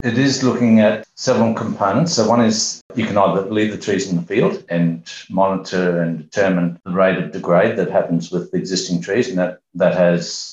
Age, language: 60-79, English